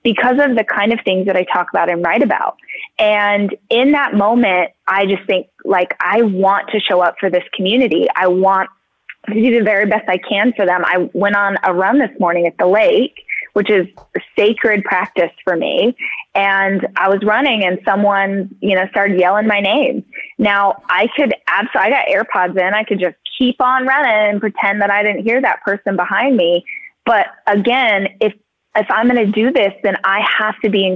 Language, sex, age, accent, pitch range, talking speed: English, female, 20-39, American, 195-240 Hz, 210 wpm